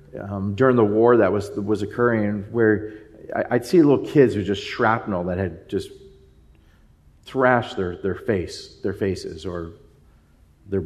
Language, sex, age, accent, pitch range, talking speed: English, male, 40-59, American, 95-115 Hz, 160 wpm